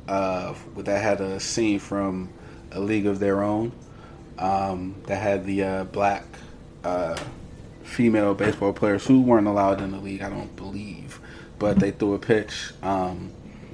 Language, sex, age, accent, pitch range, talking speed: English, male, 30-49, American, 95-105 Hz, 155 wpm